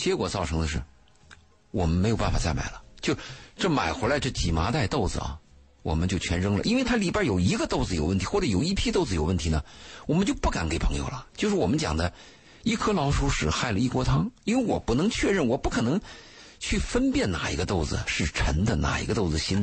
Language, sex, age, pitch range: Chinese, male, 50-69, 75-110 Hz